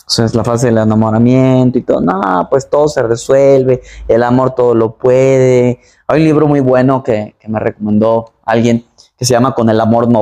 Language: Spanish